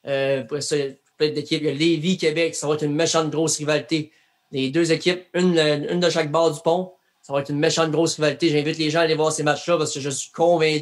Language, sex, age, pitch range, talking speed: French, male, 30-49, 145-165 Hz, 250 wpm